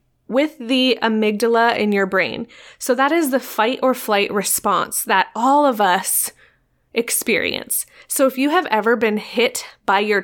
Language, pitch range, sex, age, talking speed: English, 215-280 Hz, female, 20-39, 165 wpm